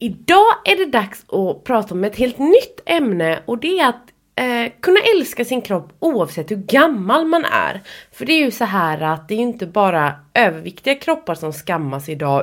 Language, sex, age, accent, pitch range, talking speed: English, female, 20-39, Swedish, 180-280 Hz, 200 wpm